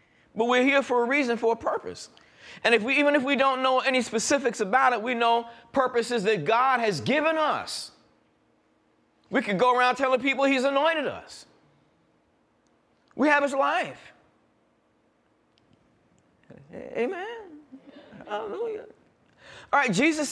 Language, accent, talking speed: English, American, 140 wpm